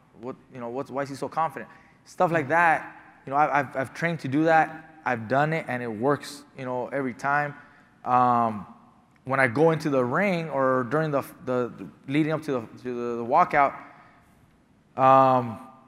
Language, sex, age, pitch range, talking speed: English, male, 20-39, 130-155 Hz, 195 wpm